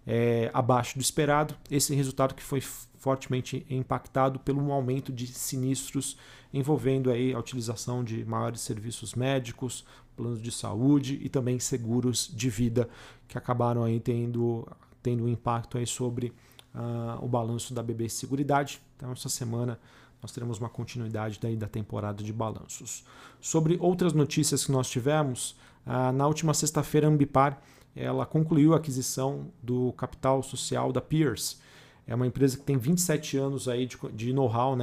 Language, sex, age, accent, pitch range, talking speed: Portuguese, male, 40-59, Brazilian, 120-140 Hz, 135 wpm